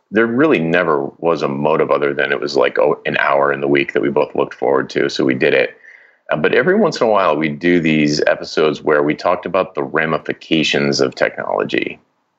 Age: 30-49